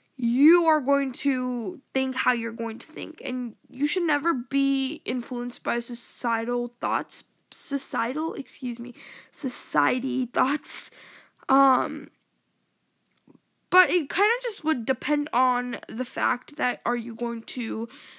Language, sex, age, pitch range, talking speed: English, female, 10-29, 240-305 Hz, 130 wpm